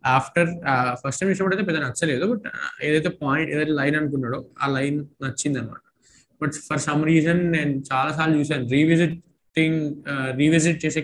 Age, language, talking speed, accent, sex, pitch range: 20-39, Telugu, 150 wpm, native, male, 135-160 Hz